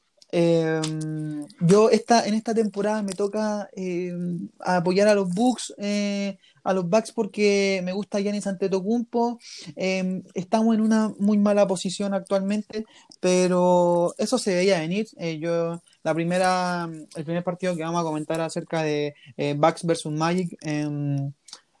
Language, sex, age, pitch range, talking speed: Spanish, male, 20-39, 160-200 Hz, 145 wpm